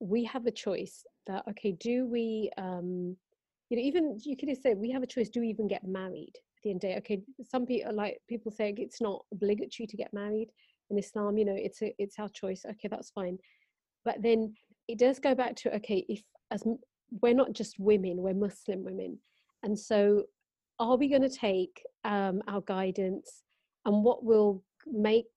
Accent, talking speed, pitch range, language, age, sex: British, 195 wpm, 200-235 Hz, English, 30-49, female